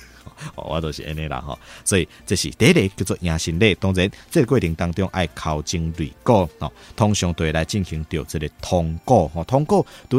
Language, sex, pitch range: Chinese, male, 80-100 Hz